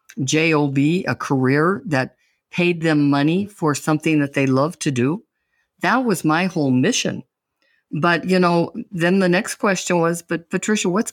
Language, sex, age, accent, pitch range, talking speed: English, female, 50-69, American, 145-195 Hz, 160 wpm